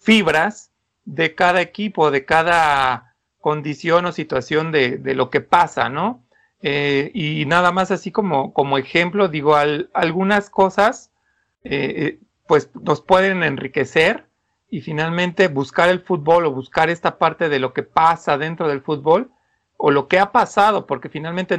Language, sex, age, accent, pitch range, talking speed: Spanish, male, 40-59, Mexican, 145-185 Hz, 155 wpm